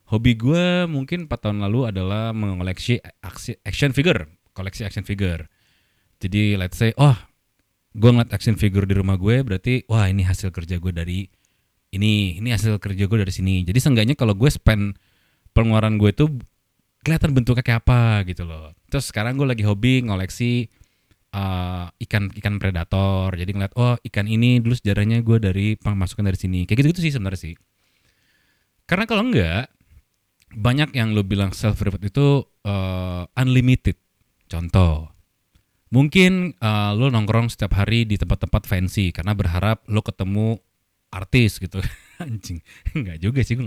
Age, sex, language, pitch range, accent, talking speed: 20-39, male, Indonesian, 95-120 Hz, native, 155 wpm